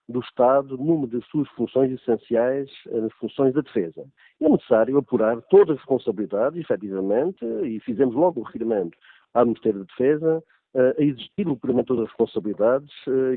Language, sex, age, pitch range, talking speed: Portuguese, male, 50-69, 115-150 Hz, 170 wpm